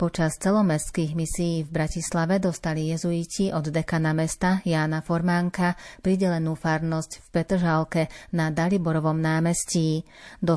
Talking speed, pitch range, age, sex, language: 115 wpm, 160-175 Hz, 30-49, female, Slovak